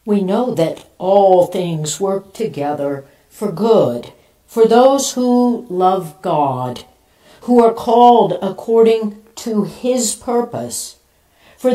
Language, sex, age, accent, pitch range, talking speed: English, female, 60-79, American, 165-265 Hz, 110 wpm